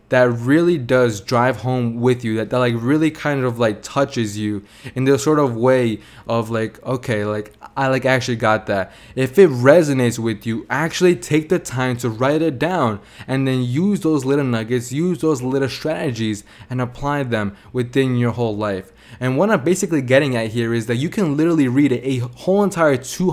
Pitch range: 115-145 Hz